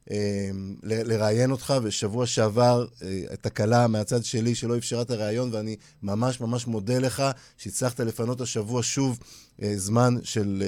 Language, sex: Hebrew, male